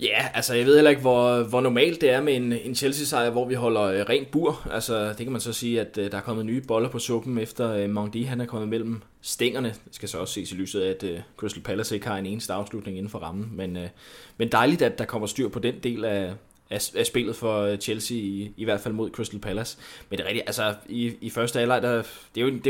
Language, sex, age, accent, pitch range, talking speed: Danish, male, 20-39, native, 100-120 Hz, 265 wpm